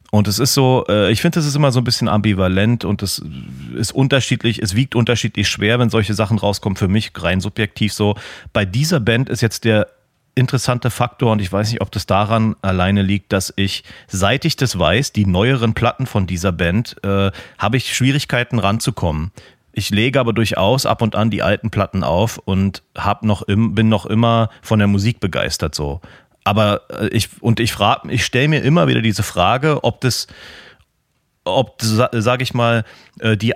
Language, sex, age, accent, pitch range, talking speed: German, male, 40-59, German, 100-125 Hz, 185 wpm